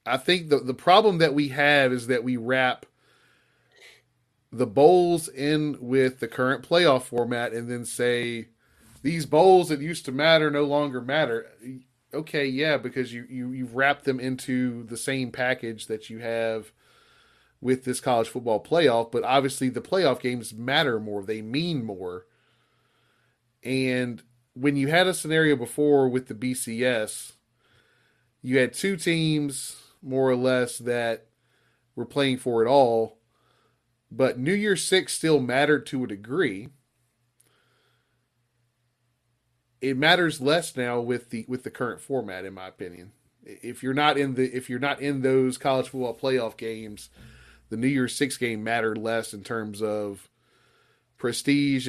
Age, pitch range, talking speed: 30-49, 120-140 Hz, 155 wpm